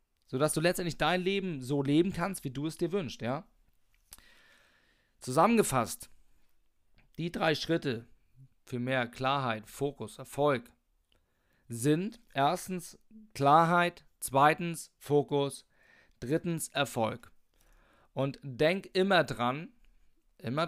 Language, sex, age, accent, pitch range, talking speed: German, male, 40-59, German, 120-160 Hz, 100 wpm